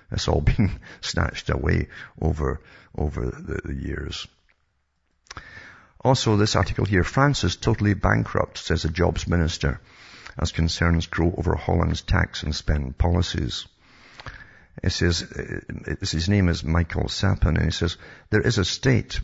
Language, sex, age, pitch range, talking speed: English, male, 60-79, 75-95 Hz, 140 wpm